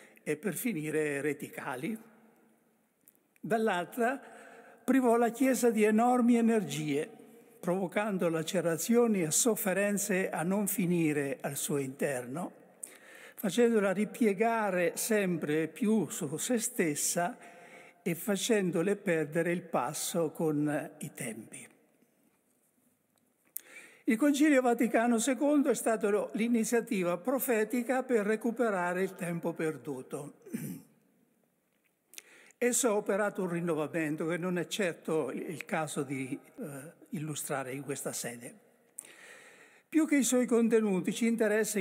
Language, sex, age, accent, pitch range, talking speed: Italian, male, 60-79, native, 170-235 Hz, 105 wpm